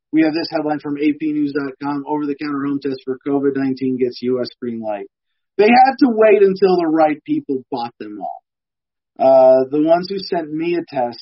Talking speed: 180 wpm